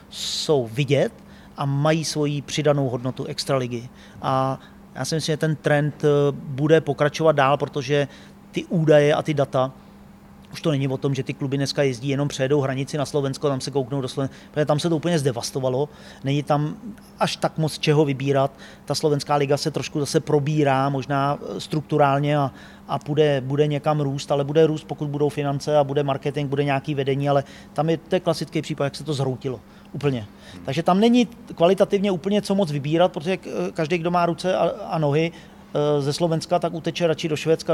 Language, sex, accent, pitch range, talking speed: Czech, male, native, 140-160 Hz, 190 wpm